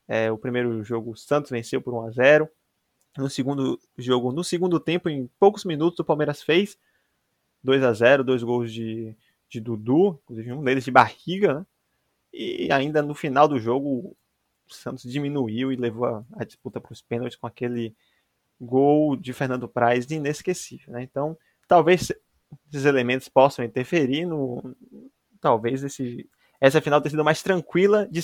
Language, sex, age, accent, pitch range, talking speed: Portuguese, male, 20-39, Brazilian, 120-175 Hz, 165 wpm